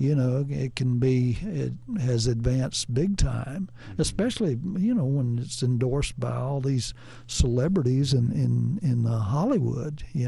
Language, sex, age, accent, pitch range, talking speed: English, male, 60-79, American, 120-155 Hz, 150 wpm